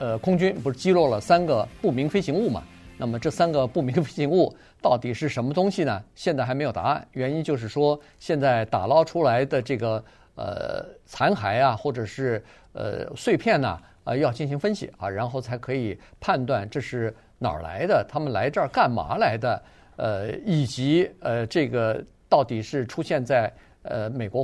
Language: Chinese